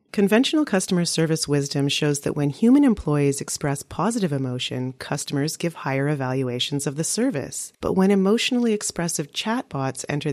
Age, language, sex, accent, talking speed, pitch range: 30-49, English, female, American, 145 wpm, 140-185 Hz